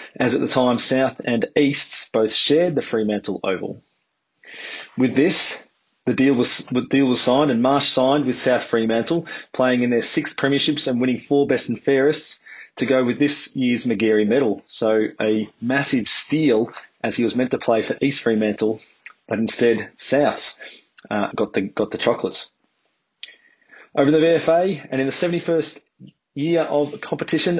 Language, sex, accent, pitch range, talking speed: English, male, Australian, 125-150 Hz, 170 wpm